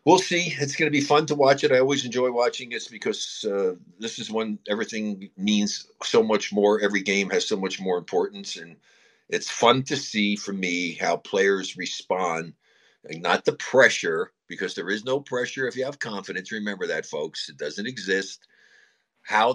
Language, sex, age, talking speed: English, male, 60-79, 190 wpm